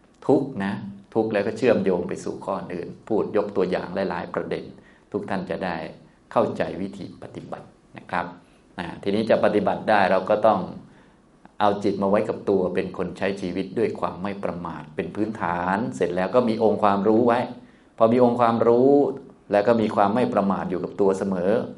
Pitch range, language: 90-110 Hz, Thai